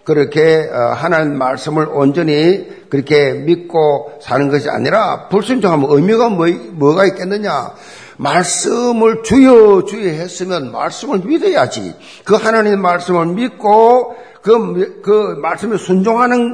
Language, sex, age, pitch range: Korean, male, 50-69, 150-220 Hz